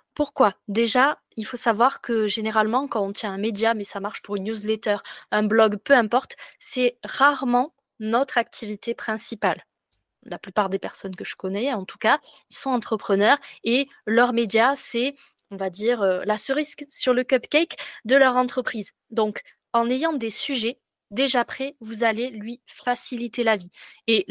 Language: French